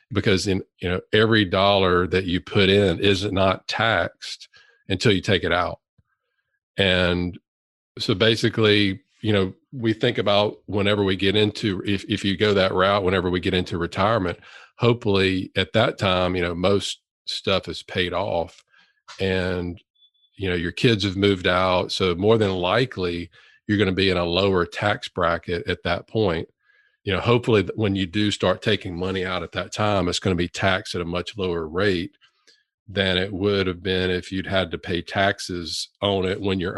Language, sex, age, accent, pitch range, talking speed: English, male, 40-59, American, 90-105 Hz, 185 wpm